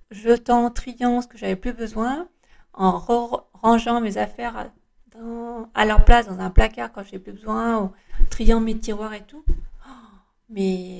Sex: female